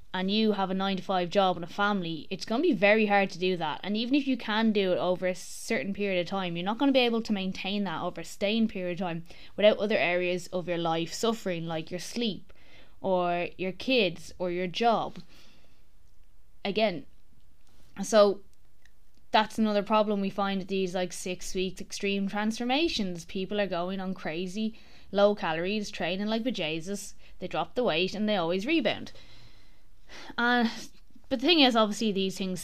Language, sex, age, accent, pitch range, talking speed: English, female, 20-39, Irish, 175-220 Hz, 190 wpm